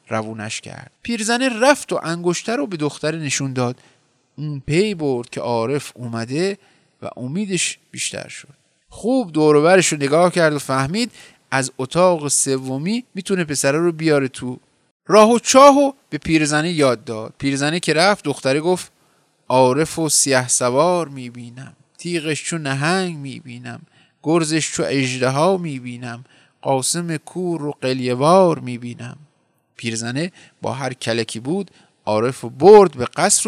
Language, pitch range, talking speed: Persian, 130-180 Hz, 140 wpm